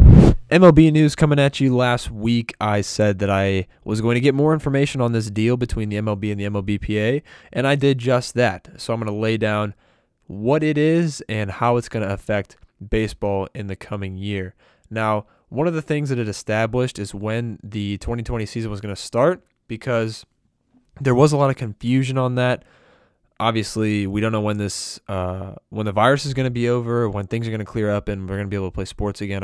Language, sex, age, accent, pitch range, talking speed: English, male, 20-39, American, 100-130 Hz, 220 wpm